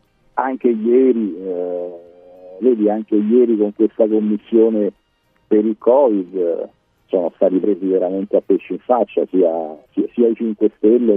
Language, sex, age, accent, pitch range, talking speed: Italian, male, 50-69, native, 105-140 Hz, 140 wpm